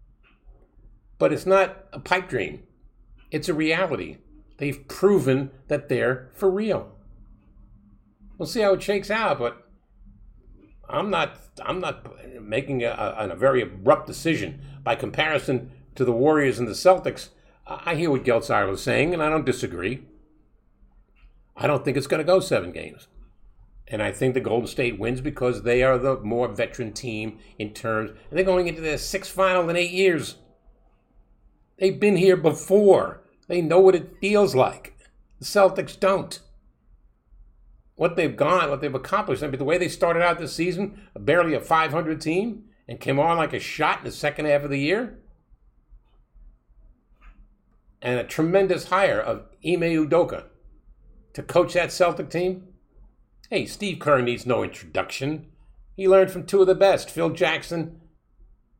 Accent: American